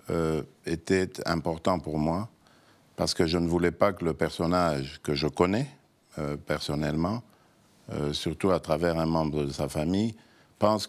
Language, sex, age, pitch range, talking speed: French, male, 50-69, 75-90 Hz, 160 wpm